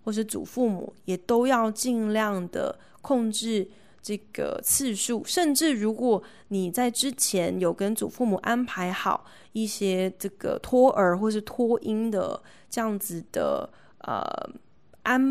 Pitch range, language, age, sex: 190-235 Hz, Chinese, 20-39, female